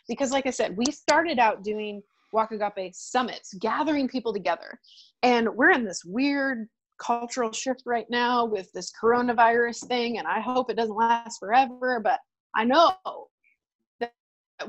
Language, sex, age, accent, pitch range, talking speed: English, female, 30-49, American, 215-265 Hz, 155 wpm